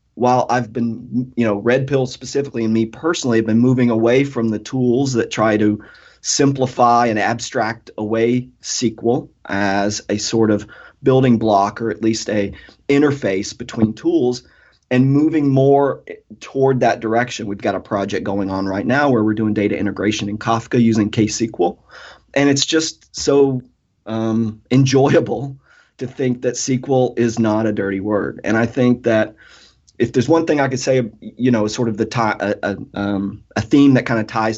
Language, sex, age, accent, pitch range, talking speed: English, male, 30-49, American, 105-125 Hz, 180 wpm